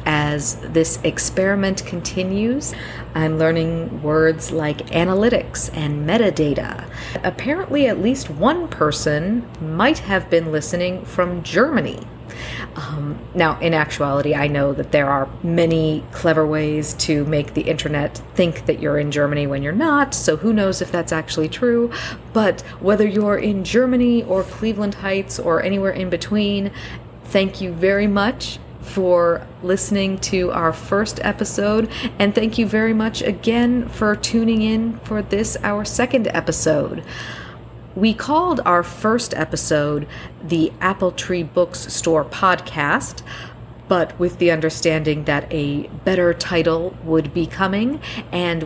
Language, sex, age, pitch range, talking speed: English, female, 40-59, 155-210 Hz, 140 wpm